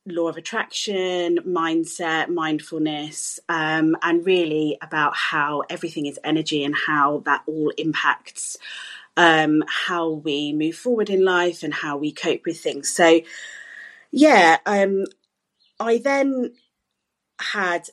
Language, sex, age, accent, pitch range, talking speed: English, female, 30-49, British, 155-180 Hz, 125 wpm